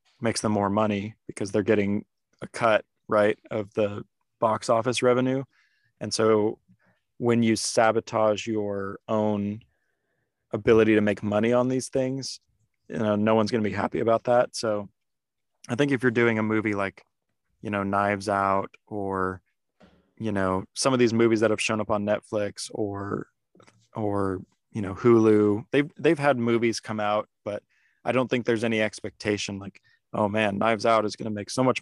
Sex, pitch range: male, 105-115 Hz